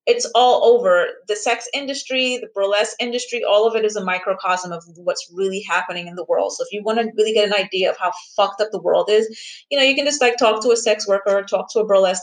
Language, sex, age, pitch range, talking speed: English, female, 30-49, 190-245 Hz, 260 wpm